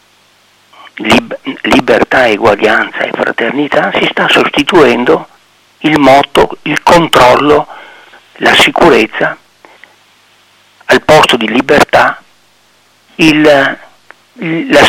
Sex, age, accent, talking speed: male, 50-69, native, 75 wpm